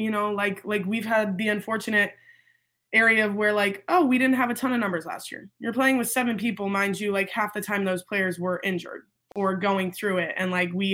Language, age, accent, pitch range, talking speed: English, 20-39, American, 190-225 Hz, 240 wpm